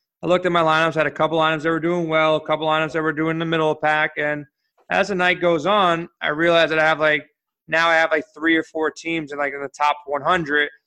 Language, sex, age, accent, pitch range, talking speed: English, male, 30-49, American, 150-170 Hz, 275 wpm